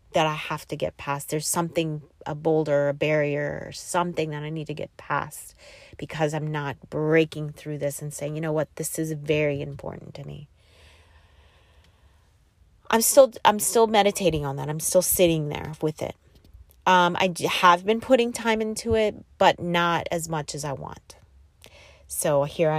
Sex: female